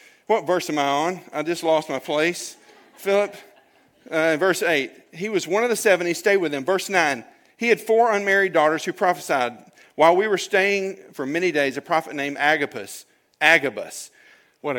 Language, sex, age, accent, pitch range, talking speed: English, male, 40-59, American, 145-195 Hz, 185 wpm